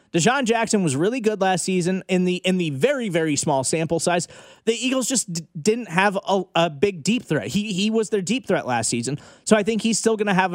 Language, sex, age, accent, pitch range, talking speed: English, male, 30-49, American, 150-210 Hz, 245 wpm